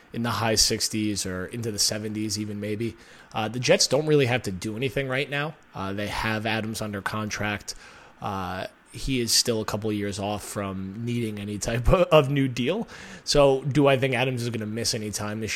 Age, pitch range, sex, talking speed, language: 20-39, 105-130 Hz, male, 210 wpm, English